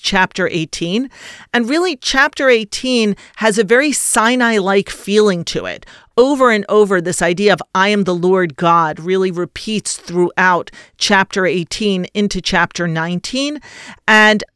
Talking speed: 135 wpm